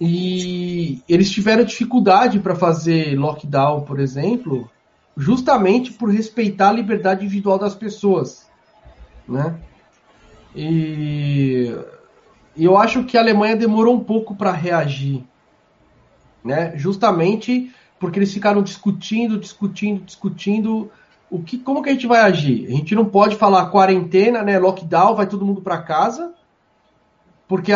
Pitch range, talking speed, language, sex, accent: 150-215 Hz, 130 wpm, Portuguese, male, Brazilian